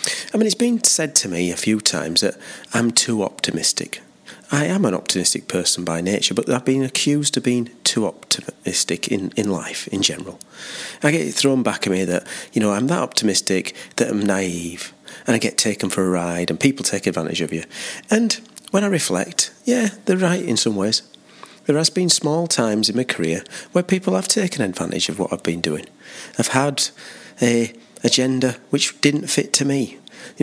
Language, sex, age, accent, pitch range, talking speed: English, male, 40-59, British, 95-145 Hz, 200 wpm